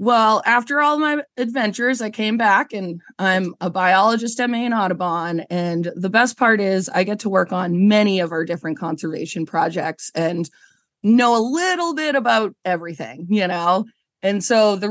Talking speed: 175 wpm